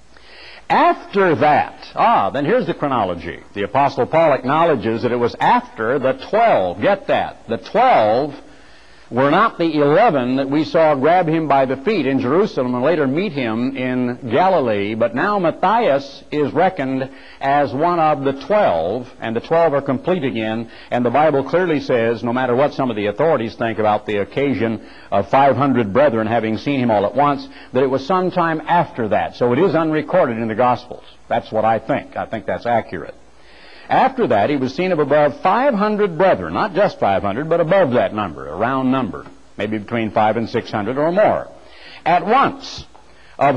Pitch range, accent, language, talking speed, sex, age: 115-170 Hz, American, English, 185 wpm, male, 60-79